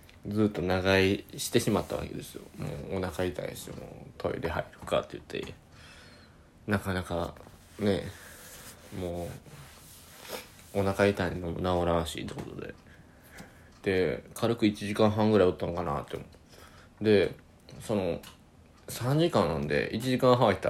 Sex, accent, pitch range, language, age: male, native, 85-120 Hz, Japanese, 20-39